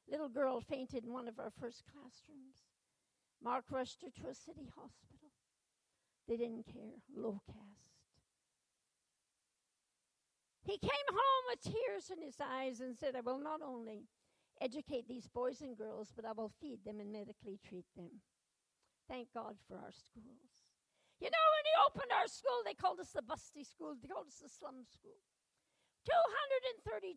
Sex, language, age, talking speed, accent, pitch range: female, English, 60-79, 165 wpm, American, 240-315 Hz